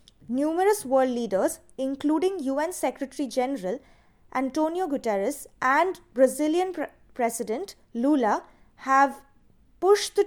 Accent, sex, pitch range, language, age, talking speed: Indian, female, 255-330 Hz, English, 20-39, 90 wpm